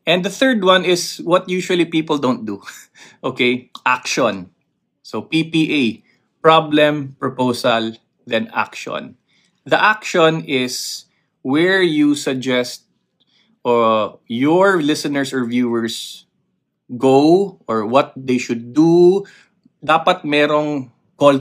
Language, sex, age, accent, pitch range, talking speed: English, male, 20-39, Filipino, 125-170 Hz, 105 wpm